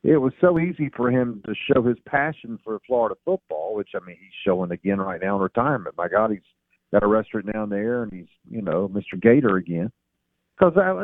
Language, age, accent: English, 50-69, American